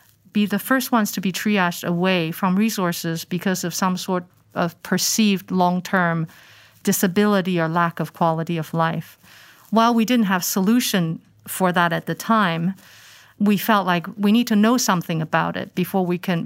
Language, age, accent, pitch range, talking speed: English, 50-69, American, 175-205 Hz, 170 wpm